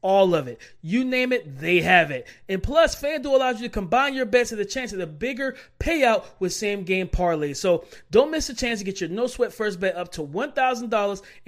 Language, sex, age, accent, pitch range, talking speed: English, male, 30-49, American, 190-260 Hz, 230 wpm